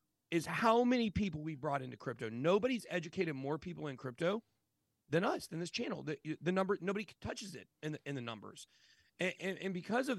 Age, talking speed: 40-59, 205 wpm